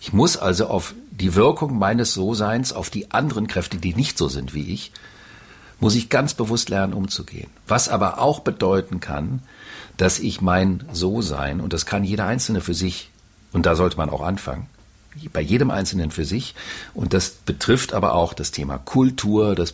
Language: German